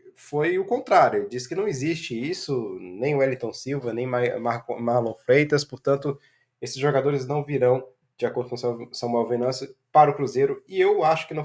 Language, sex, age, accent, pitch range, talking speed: Portuguese, male, 20-39, Brazilian, 125-160 Hz, 200 wpm